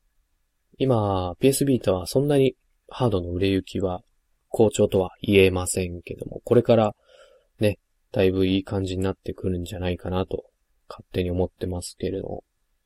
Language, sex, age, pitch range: Japanese, male, 20-39, 90-115 Hz